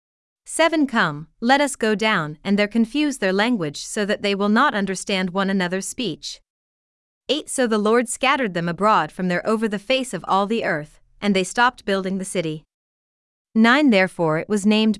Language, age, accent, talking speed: English, 30-49, American, 190 wpm